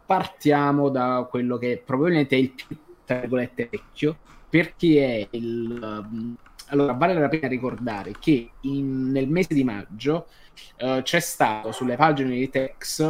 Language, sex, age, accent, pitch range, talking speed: Italian, male, 20-39, native, 120-145 Hz, 135 wpm